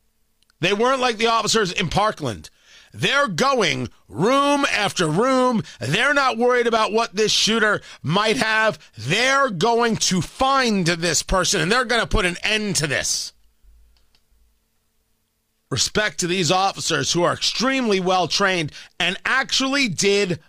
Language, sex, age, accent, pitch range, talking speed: English, male, 40-59, American, 145-235 Hz, 140 wpm